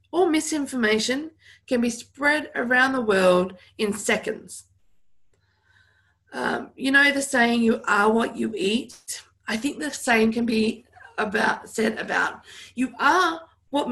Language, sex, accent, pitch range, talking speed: English, female, Australian, 205-245 Hz, 140 wpm